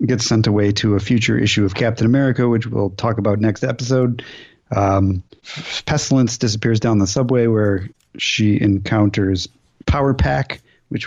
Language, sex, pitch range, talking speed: English, male, 110-145 Hz, 150 wpm